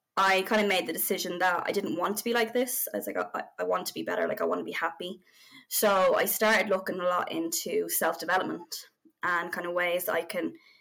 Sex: female